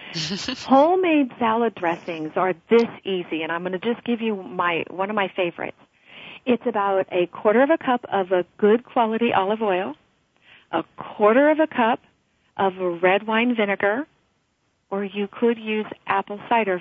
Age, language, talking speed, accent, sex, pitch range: 40-59, English, 165 wpm, American, female, 180-240 Hz